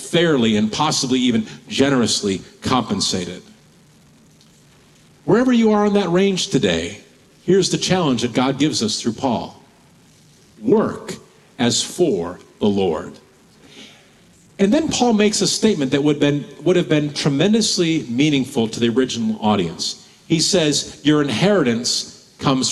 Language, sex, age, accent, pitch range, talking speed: English, male, 50-69, American, 150-205 Hz, 130 wpm